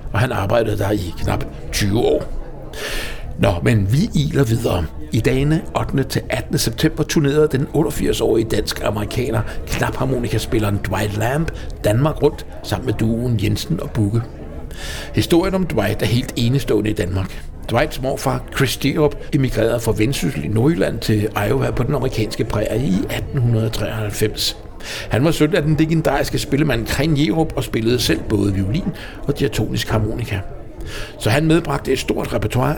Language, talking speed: English, 150 wpm